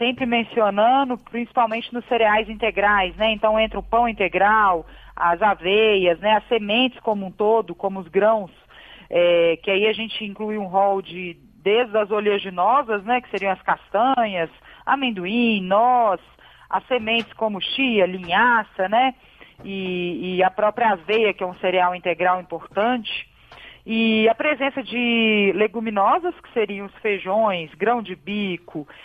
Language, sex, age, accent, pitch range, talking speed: Portuguese, female, 40-59, Brazilian, 195-250 Hz, 145 wpm